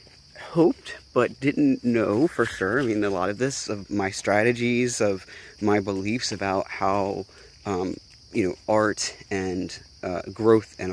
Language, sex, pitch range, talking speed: English, male, 100-120 Hz, 155 wpm